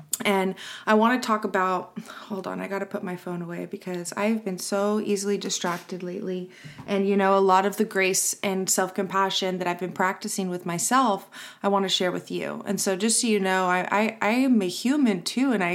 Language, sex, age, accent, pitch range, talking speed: English, female, 20-39, American, 185-215 Hz, 225 wpm